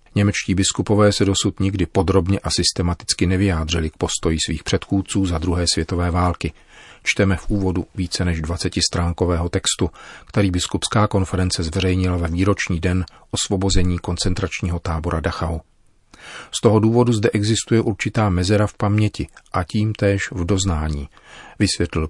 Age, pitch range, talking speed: 40-59, 85-100 Hz, 135 wpm